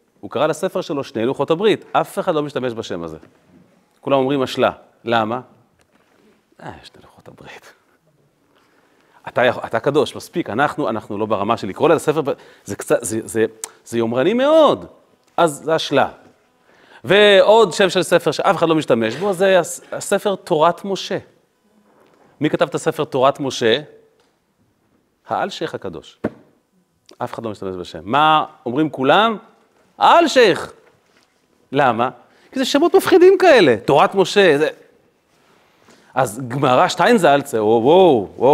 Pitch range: 120-200 Hz